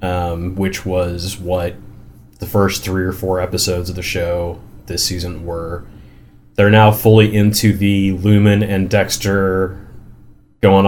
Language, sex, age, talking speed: English, male, 30-49, 140 wpm